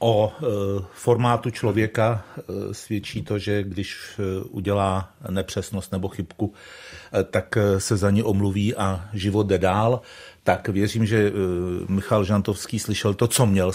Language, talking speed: Czech, 155 wpm